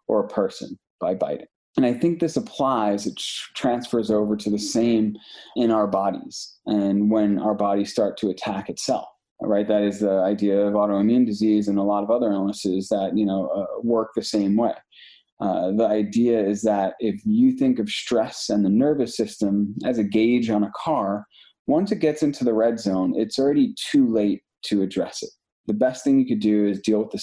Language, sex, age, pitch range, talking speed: English, male, 20-39, 100-115 Hz, 205 wpm